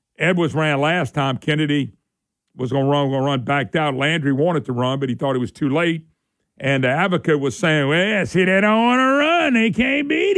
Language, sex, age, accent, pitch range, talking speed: English, male, 50-69, American, 140-205 Hz, 235 wpm